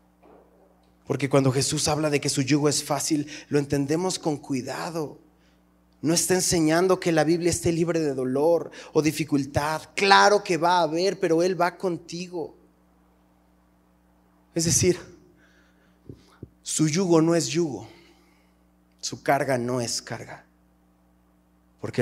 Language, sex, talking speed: Spanish, male, 130 wpm